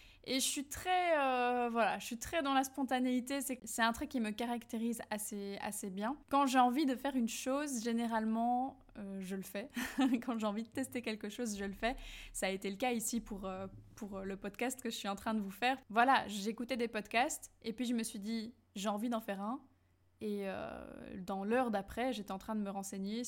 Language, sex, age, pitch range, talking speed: French, female, 20-39, 205-245 Hz, 230 wpm